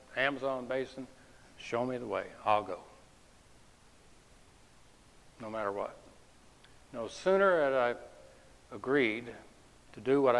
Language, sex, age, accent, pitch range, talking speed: English, male, 60-79, American, 105-140 Hz, 110 wpm